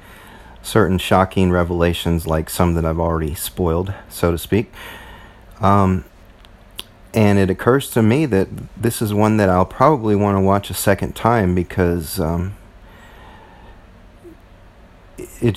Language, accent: English, American